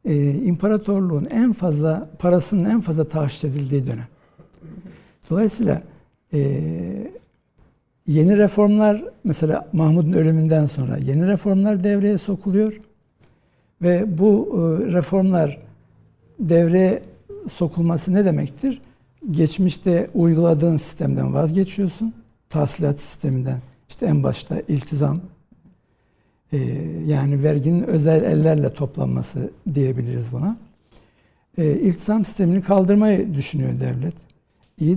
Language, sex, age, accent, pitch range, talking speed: Turkish, male, 60-79, native, 150-195 Hz, 90 wpm